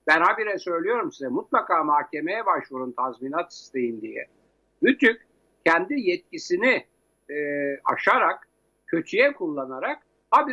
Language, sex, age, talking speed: Turkish, male, 60-79, 105 wpm